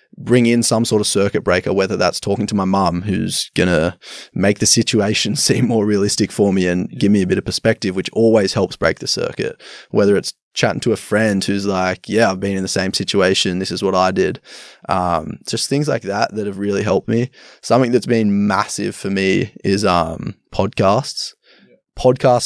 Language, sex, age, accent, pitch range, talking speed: English, male, 20-39, Australian, 95-110 Hz, 205 wpm